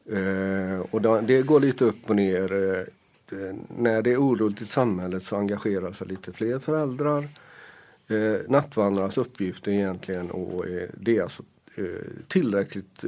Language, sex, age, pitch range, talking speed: Swedish, male, 50-69, 95-115 Hz, 155 wpm